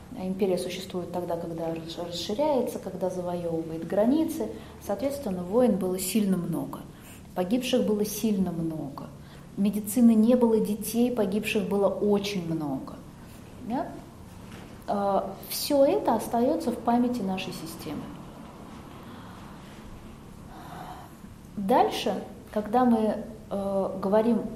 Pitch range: 190-250 Hz